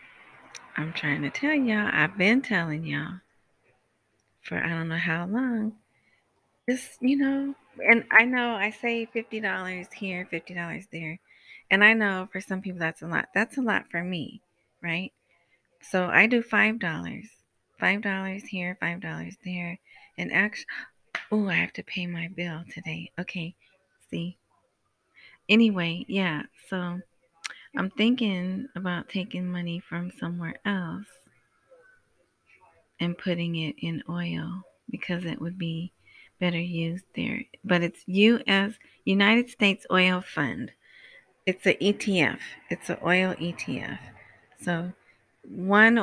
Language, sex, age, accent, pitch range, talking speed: English, female, 30-49, American, 175-215 Hz, 130 wpm